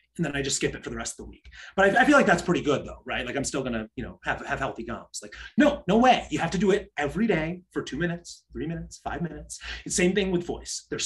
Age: 30-49